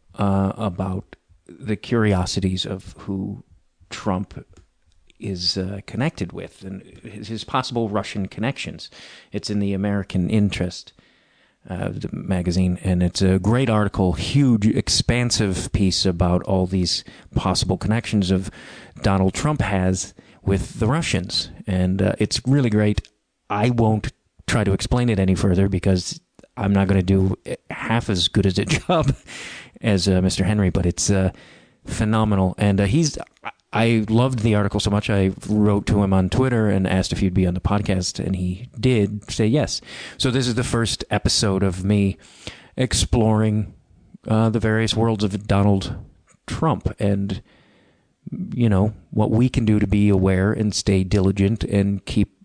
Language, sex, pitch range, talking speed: English, male, 95-110 Hz, 155 wpm